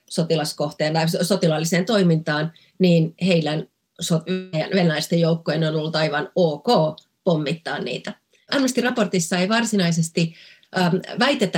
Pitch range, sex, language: 155-195 Hz, female, Finnish